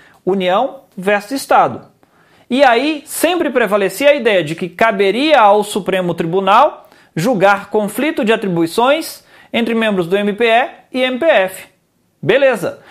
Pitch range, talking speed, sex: 215-275 Hz, 120 wpm, male